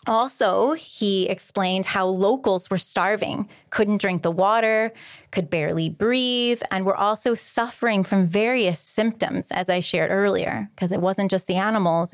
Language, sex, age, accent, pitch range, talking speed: English, female, 20-39, American, 180-230 Hz, 155 wpm